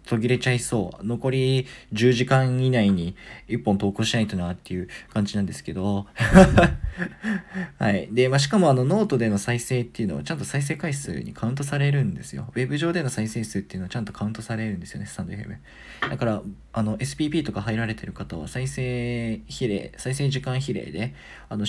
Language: Japanese